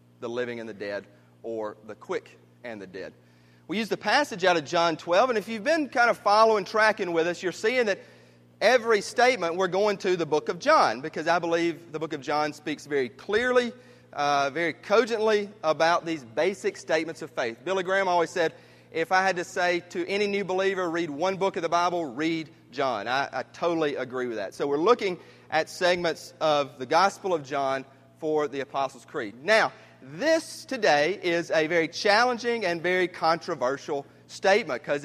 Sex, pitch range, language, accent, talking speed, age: male, 130-190 Hz, English, American, 195 wpm, 30-49